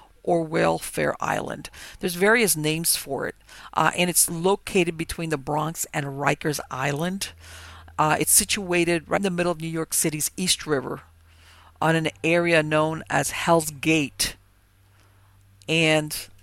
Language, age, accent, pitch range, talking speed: English, 50-69, American, 105-170 Hz, 145 wpm